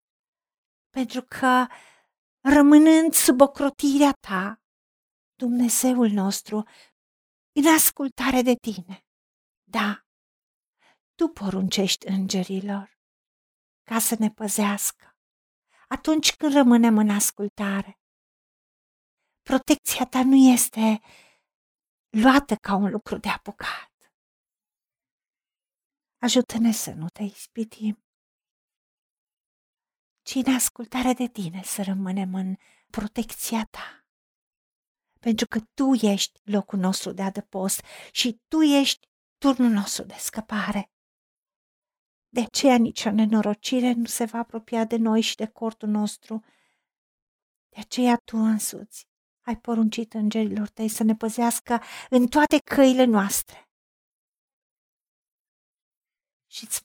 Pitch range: 205-255 Hz